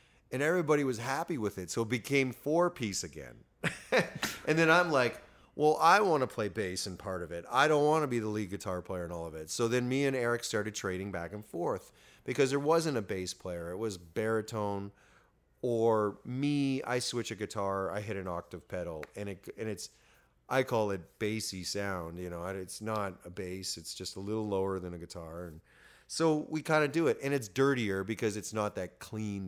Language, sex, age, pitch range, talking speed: English, male, 30-49, 90-120 Hz, 220 wpm